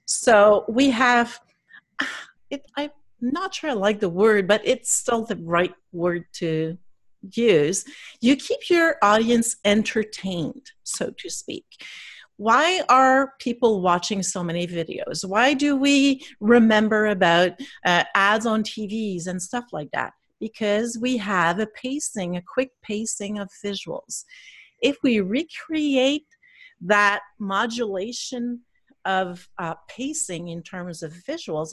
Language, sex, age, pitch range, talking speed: English, female, 40-59, 190-265 Hz, 130 wpm